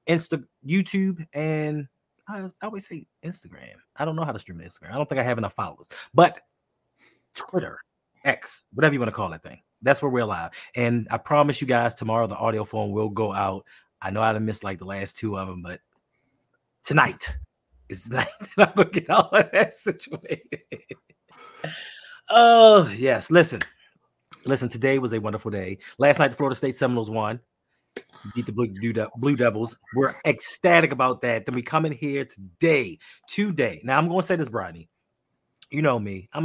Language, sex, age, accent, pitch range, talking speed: English, male, 30-49, American, 110-160 Hz, 190 wpm